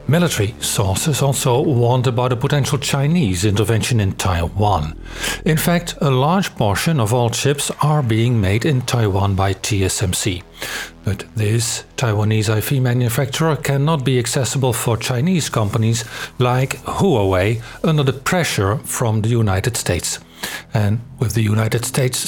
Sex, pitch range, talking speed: male, 110-140 Hz, 135 wpm